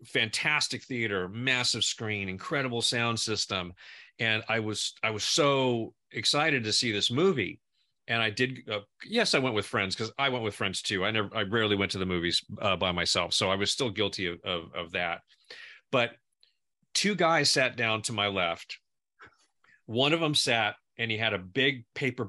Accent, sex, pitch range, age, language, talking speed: American, male, 105-130 Hz, 40-59, English, 190 wpm